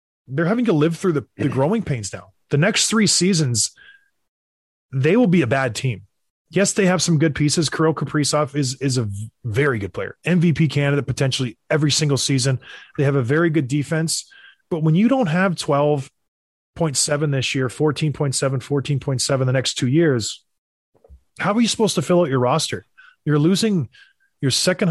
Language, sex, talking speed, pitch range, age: English, male, 175 wpm, 135-170 Hz, 20-39